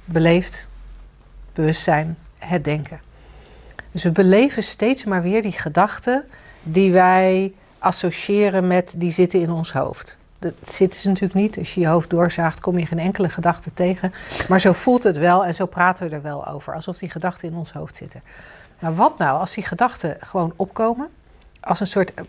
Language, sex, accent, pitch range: Dutch, female, Dutch, 165-200 Hz